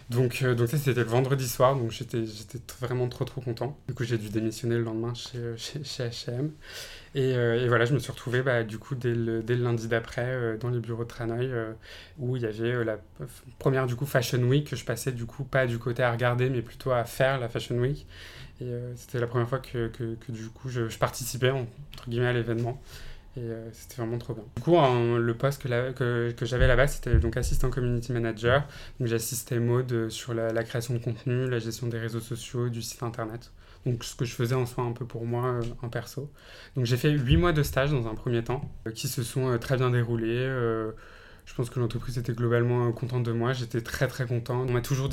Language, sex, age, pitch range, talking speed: French, male, 20-39, 115-130 Hz, 245 wpm